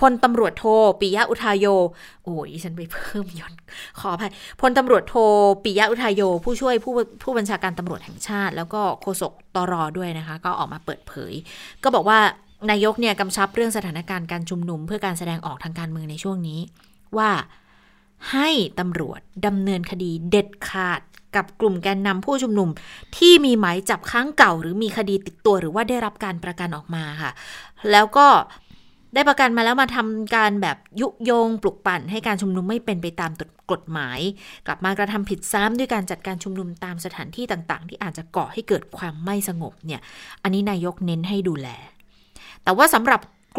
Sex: female